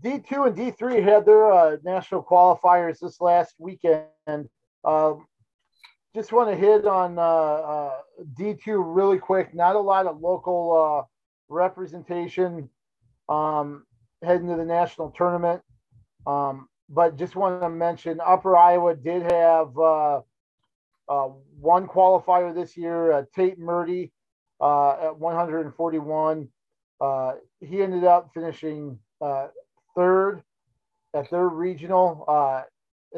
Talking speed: 125 wpm